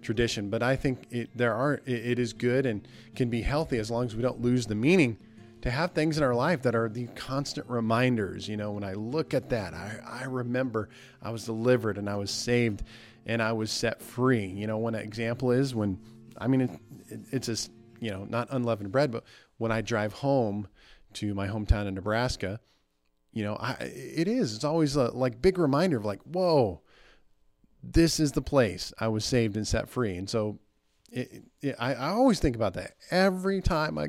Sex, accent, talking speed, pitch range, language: male, American, 205 wpm, 110-130 Hz, English